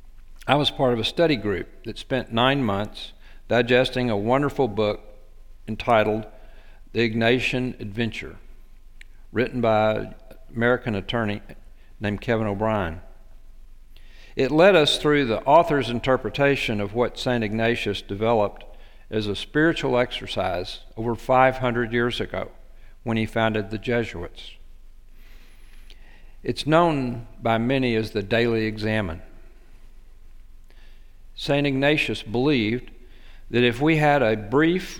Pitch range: 100-130 Hz